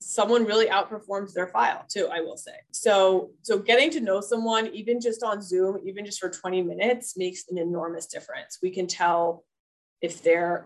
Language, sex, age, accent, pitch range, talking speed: English, female, 20-39, American, 180-230 Hz, 185 wpm